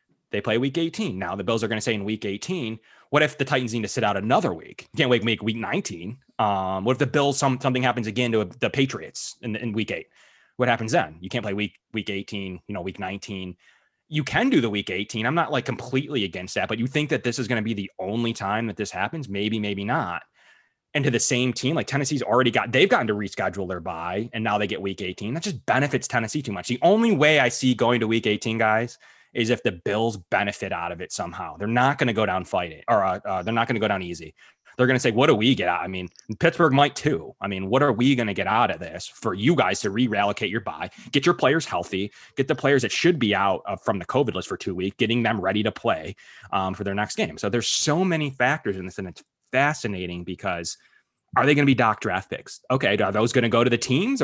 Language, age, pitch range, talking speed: English, 20-39, 100-130 Hz, 265 wpm